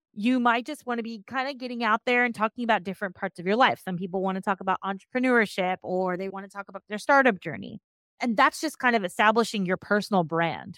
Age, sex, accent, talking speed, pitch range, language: 30-49, female, American, 245 wpm, 190-230 Hz, English